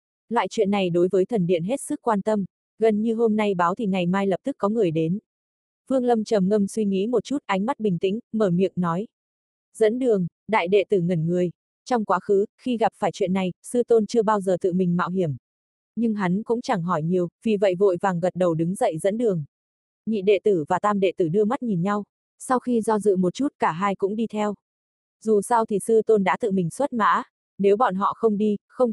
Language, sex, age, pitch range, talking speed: Vietnamese, female, 20-39, 185-225 Hz, 245 wpm